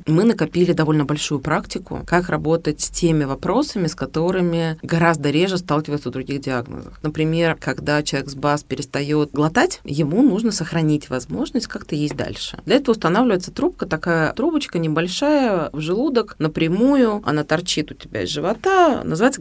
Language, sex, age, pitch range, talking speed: Russian, female, 30-49, 150-205 Hz, 150 wpm